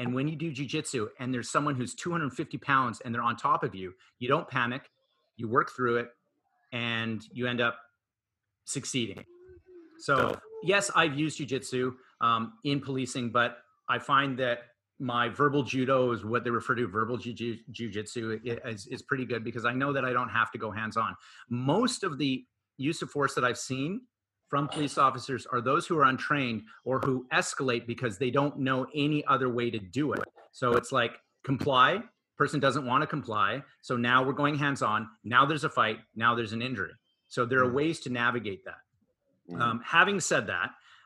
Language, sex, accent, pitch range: English, male, American, 120-145 Hz